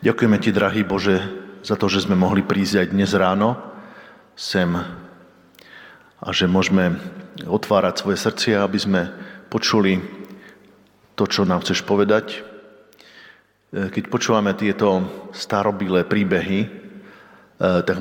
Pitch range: 90-100 Hz